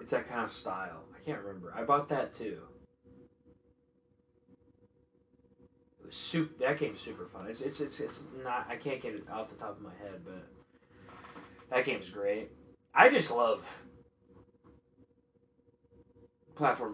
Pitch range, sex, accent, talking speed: 125-165 Hz, male, American, 150 wpm